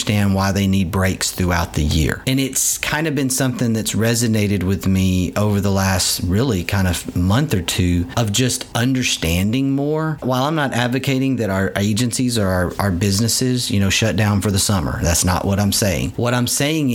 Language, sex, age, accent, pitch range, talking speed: English, male, 40-59, American, 95-130 Hz, 200 wpm